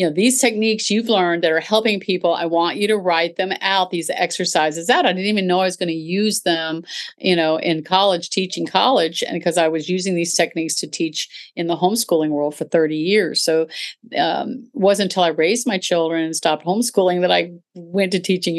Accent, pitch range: American, 165-205 Hz